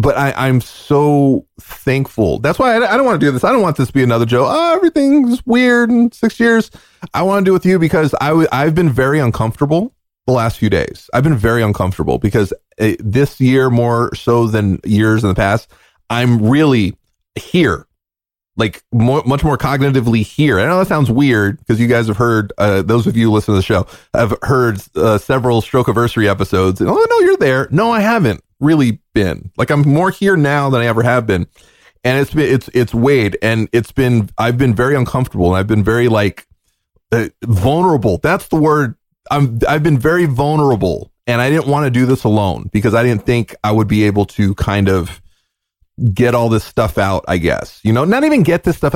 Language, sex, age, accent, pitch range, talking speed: English, male, 30-49, American, 105-145 Hz, 215 wpm